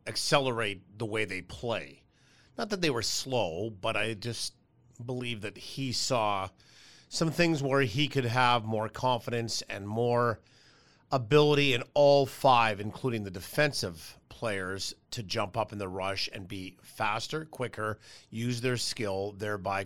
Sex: male